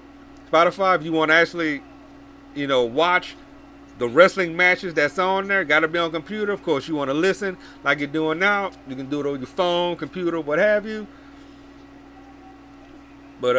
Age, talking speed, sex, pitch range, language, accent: 40-59, 190 wpm, male, 155-215 Hz, English, American